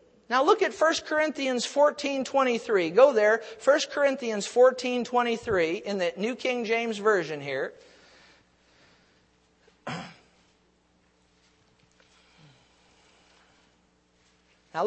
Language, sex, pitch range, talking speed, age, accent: English, male, 170-255 Hz, 75 wpm, 50-69, American